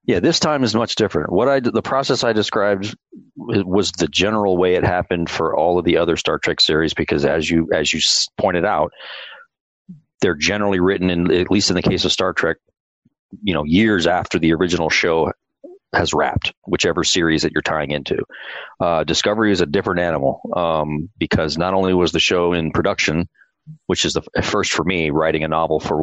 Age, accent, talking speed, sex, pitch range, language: 30-49, American, 195 wpm, male, 80-105 Hz, English